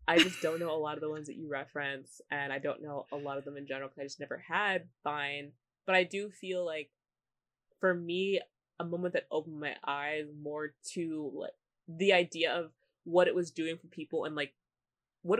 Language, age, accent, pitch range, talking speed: English, 20-39, American, 145-180 Hz, 220 wpm